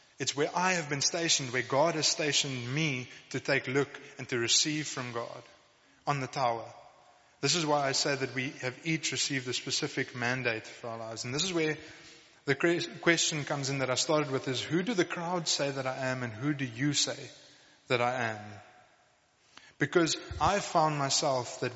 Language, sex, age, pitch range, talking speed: English, male, 20-39, 130-155 Hz, 200 wpm